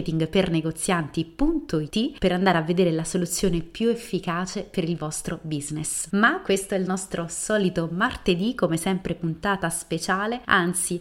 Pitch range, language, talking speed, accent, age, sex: 170-210 Hz, Italian, 140 wpm, native, 30-49, female